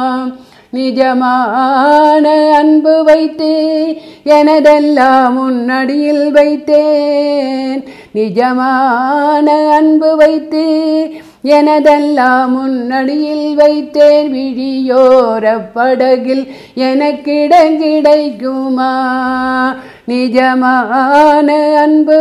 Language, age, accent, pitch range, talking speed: Tamil, 50-69, native, 255-300 Hz, 45 wpm